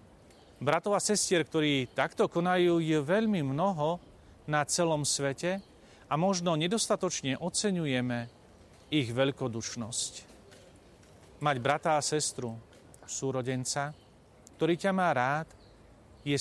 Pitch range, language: 130-175 Hz, Slovak